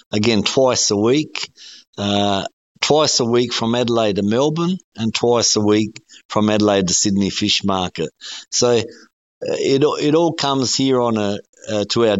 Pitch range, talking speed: 100-120 Hz, 160 wpm